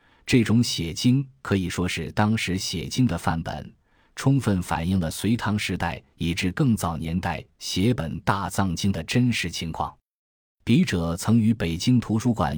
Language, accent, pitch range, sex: Chinese, native, 85-115 Hz, male